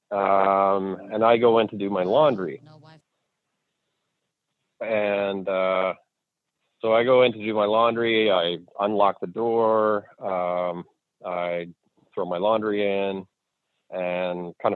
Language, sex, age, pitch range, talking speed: English, male, 30-49, 90-115 Hz, 125 wpm